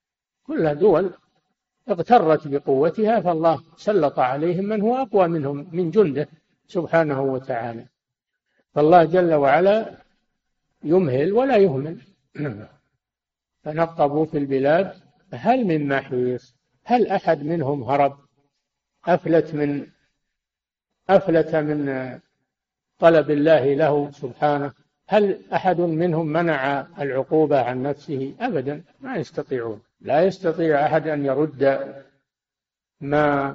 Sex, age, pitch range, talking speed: male, 60-79, 135-165 Hz, 100 wpm